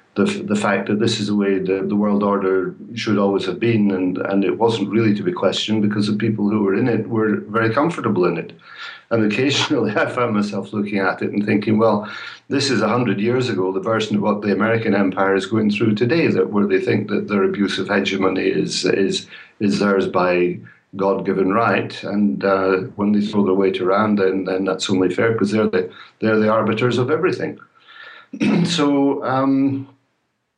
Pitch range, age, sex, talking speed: 95-115 Hz, 50-69, male, 205 wpm